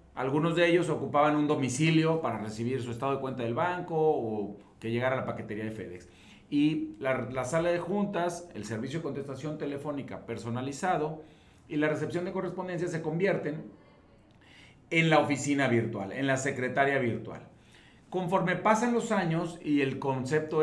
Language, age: Spanish, 40-59